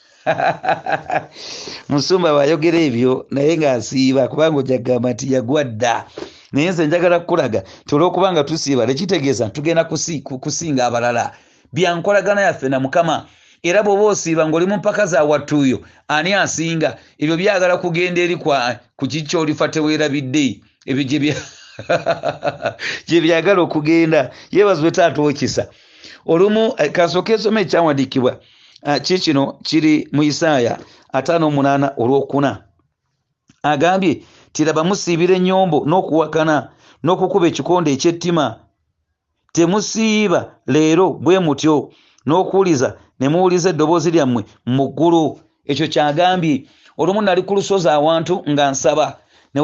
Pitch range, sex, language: 140-180 Hz, male, English